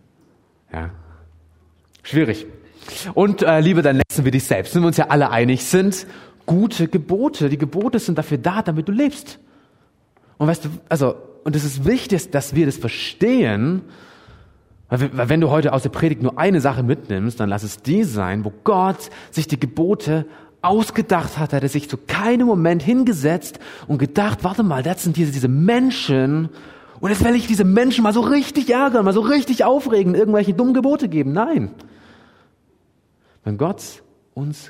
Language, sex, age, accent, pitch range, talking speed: German, male, 30-49, German, 135-215 Hz, 175 wpm